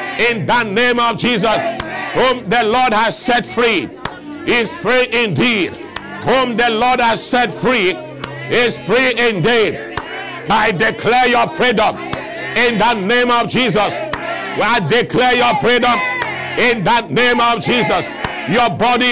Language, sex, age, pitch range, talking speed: English, male, 60-79, 230-250 Hz, 135 wpm